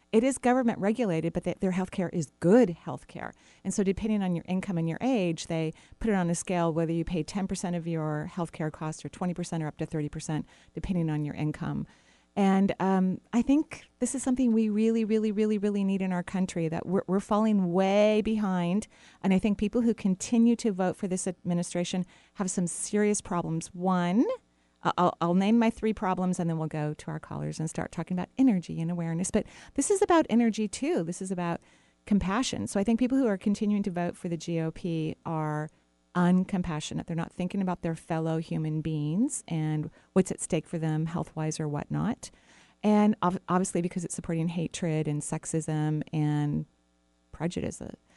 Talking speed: 195 wpm